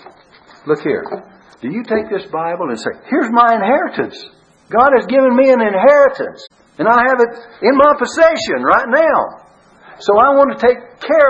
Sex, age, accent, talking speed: male, 60-79, American, 175 wpm